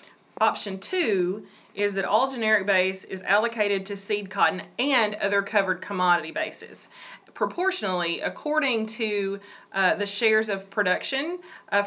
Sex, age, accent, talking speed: female, 30-49, American, 130 wpm